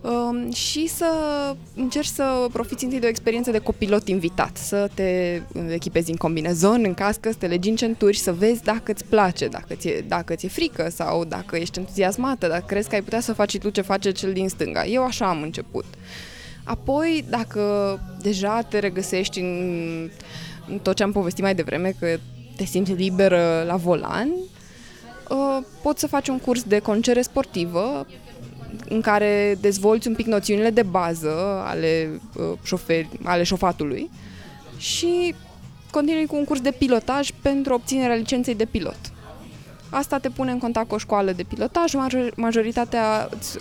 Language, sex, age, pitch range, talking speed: Romanian, female, 20-39, 185-255 Hz, 160 wpm